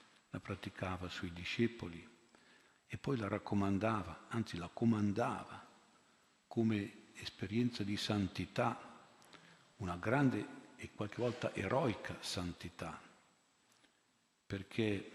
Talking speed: 90 wpm